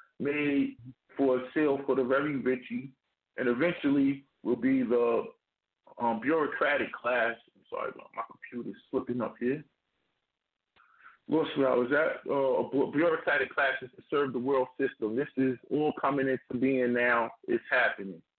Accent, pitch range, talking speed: American, 125-160 Hz, 140 wpm